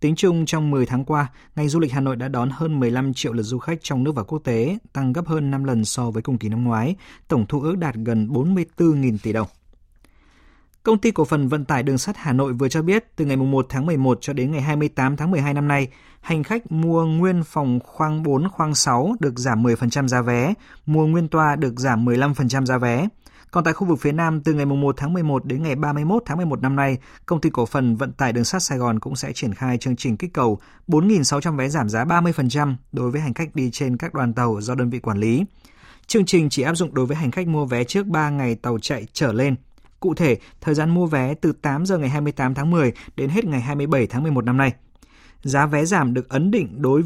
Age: 20-39